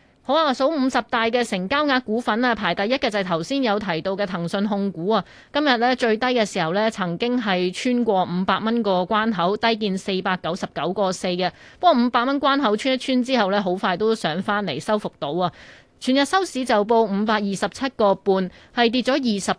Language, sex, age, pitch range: Chinese, female, 20-39, 185-240 Hz